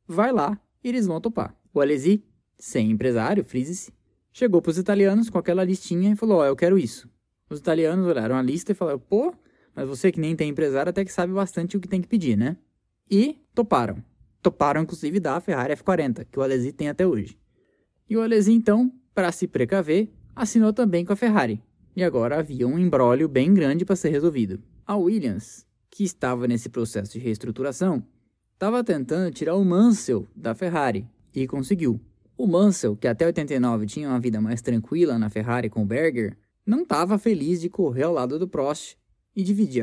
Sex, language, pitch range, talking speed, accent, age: male, Portuguese, 130-200 Hz, 190 wpm, Brazilian, 10-29